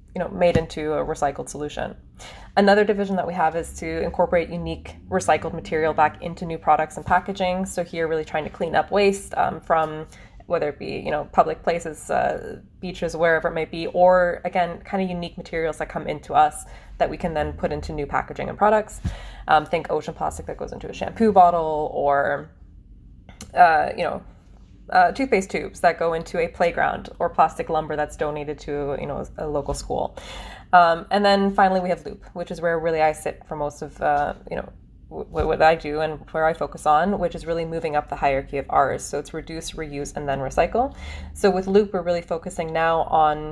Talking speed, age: 210 wpm, 20-39